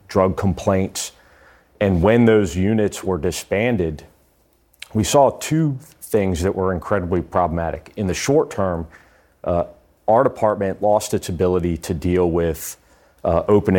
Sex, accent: male, American